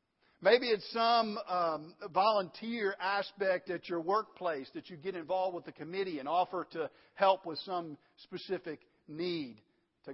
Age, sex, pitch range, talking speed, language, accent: 50-69, male, 165-210 Hz, 150 wpm, English, American